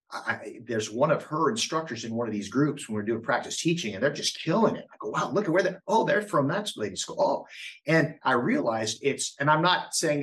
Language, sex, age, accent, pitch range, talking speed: English, male, 50-69, American, 110-145 Hz, 240 wpm